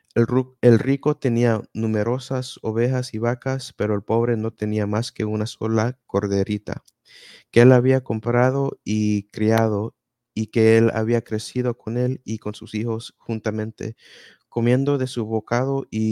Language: Spanish